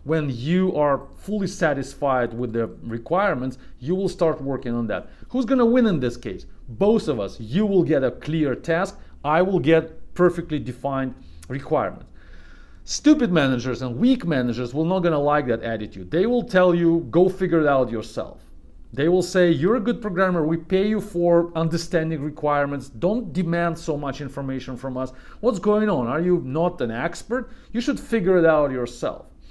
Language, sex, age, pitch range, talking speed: English, male, 40-59, 125-180 Hz, 180 wpm